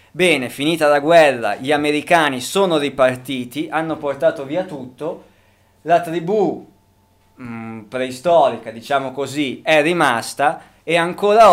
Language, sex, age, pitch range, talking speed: Italian, male, 20-39, 120-155 Hz, 115 wpm